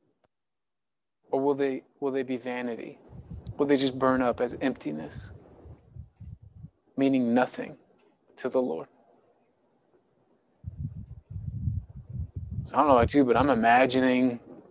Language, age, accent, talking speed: English, 30-49, American, 115 wpm